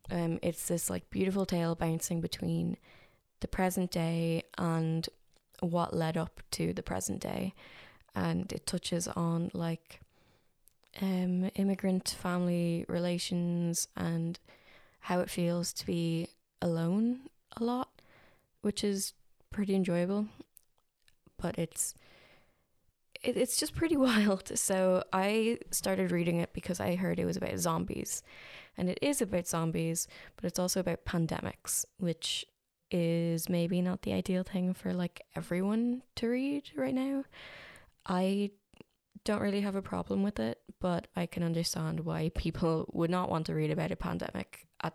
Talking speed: 145 wpm